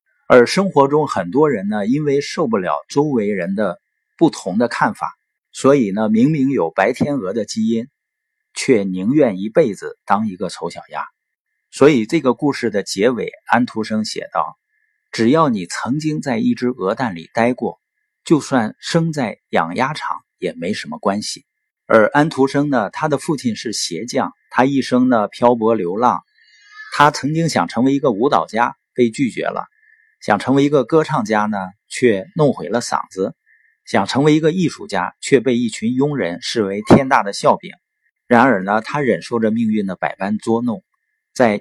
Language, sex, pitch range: Chinese, male, 110-165 Hz